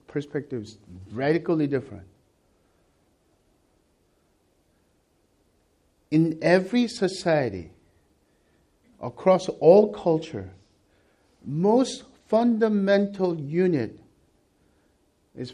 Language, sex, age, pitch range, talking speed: English, male, 50-69, 135-215 Hz, 50 wpm